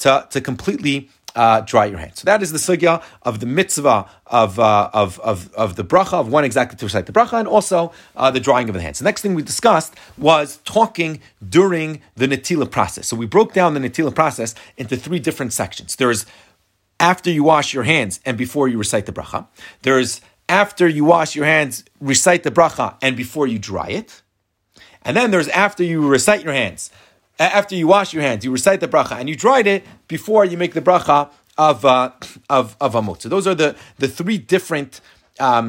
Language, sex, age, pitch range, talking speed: English, male, 30-49, 120-175 Hz, 210 wpm